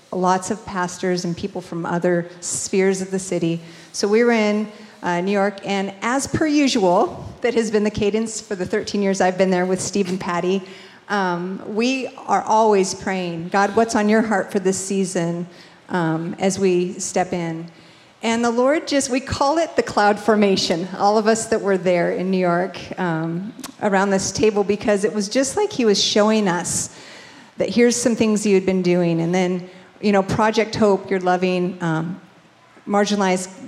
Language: English